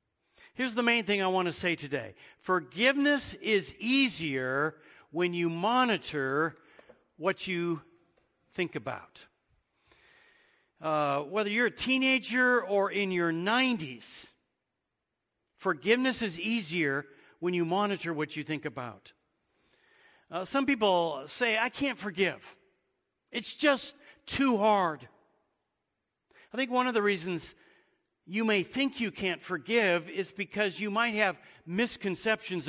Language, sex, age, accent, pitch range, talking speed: English, male, 50-69, American, 165-230 Hz, 125 wpm